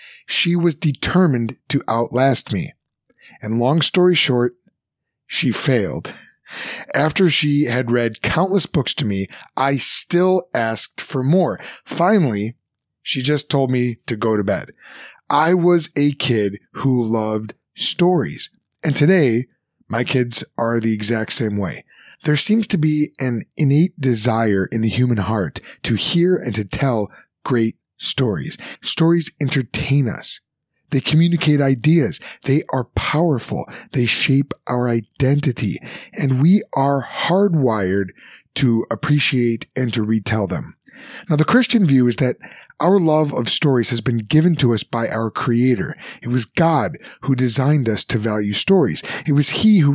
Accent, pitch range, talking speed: American, 115-155 Hz, 145 wpm